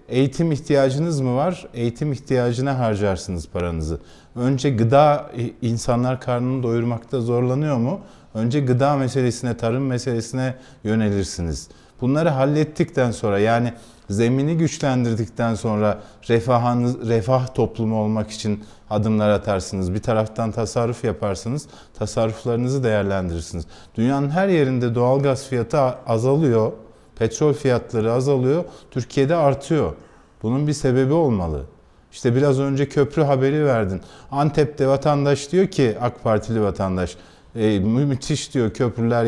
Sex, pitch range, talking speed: male, 110-135 Hz, 110 wpm